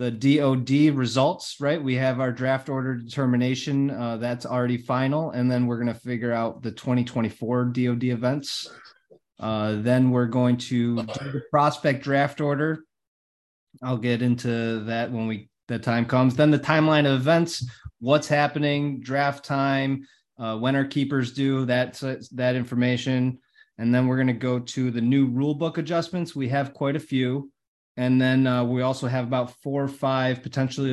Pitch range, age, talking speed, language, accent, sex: 120-140 Hz, 30-49, 170 wpm, English, American, male